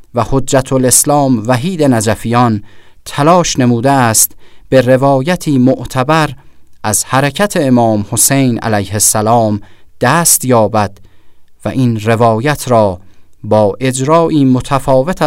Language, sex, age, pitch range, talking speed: Persian, male, 30-49, 110-135 Hz, 100 wpm